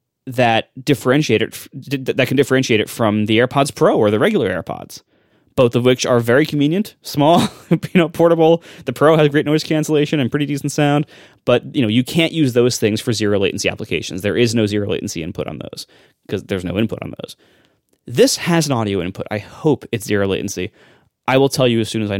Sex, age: male, 20-39